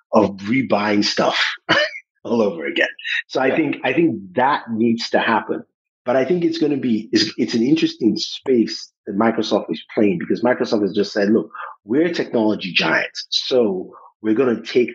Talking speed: 180 wpm